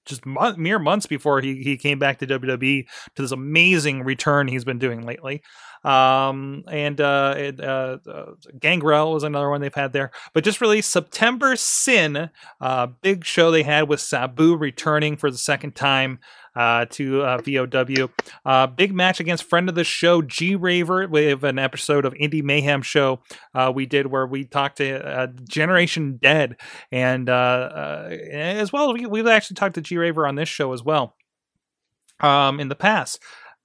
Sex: male